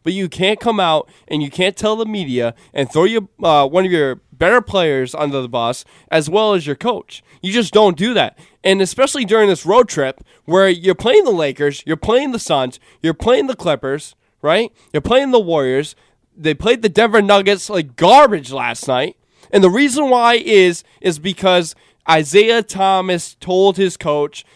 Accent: American